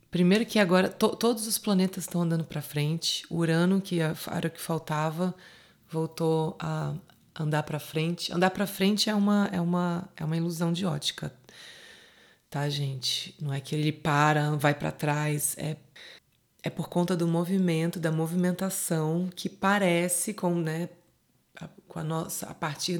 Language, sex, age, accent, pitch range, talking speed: Portuguese, female, 20-39, Brazilian, 155-185 Hz, 140 wpm